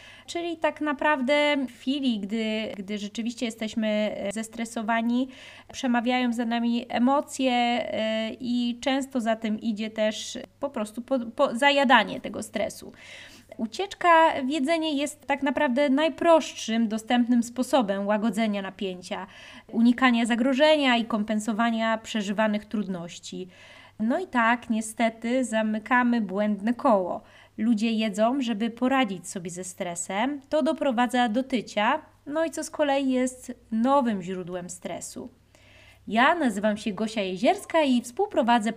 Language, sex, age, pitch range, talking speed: Polish, female, 20-39, 215-270 Hz, 120 wpm